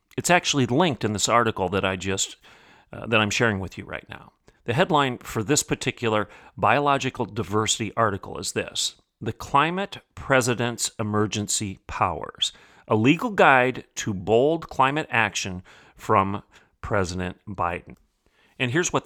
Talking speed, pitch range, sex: 140 wpm, 95-120 Hz, male